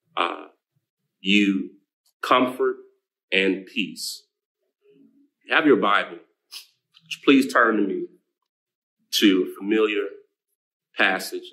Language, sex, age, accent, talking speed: English, male, 40-59, American, 90 wpm